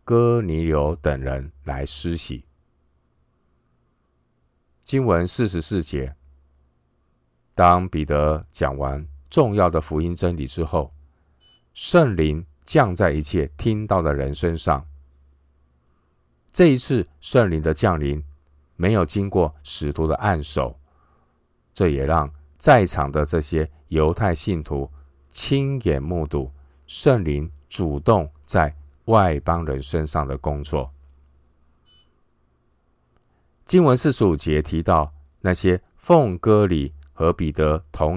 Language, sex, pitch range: Chinese, male, 70-85 Hz